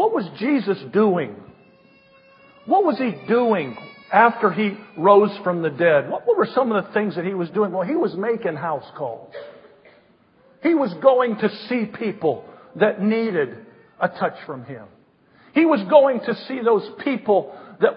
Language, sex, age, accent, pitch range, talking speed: English, male, 50-69, American, 175-235 Hz, 165 wpm